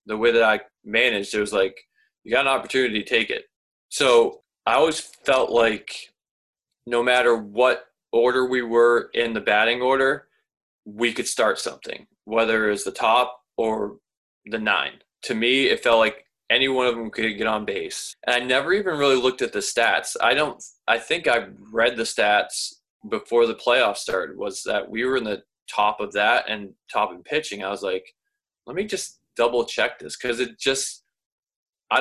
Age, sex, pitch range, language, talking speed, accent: 20-39, male, 105-135 Hz, English, 190 wpm, American